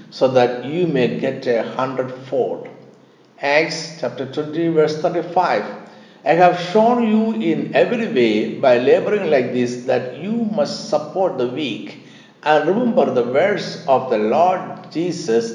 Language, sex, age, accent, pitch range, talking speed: Malayalam, male, 60-79, native, 130-180 Hz, 145 wpm